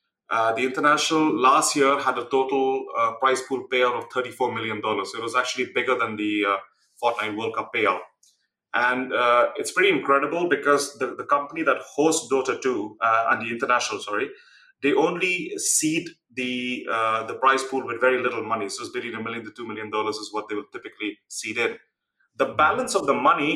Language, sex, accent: English, male, Indian